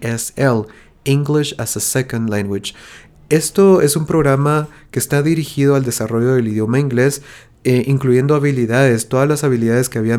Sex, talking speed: male, 145 wpm